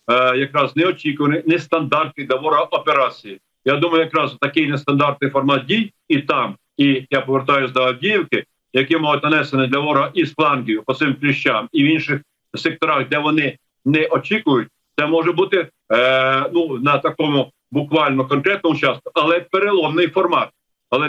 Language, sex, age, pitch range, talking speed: Ukrainian, male, 50-69, 135-160 Hz, 140 wpm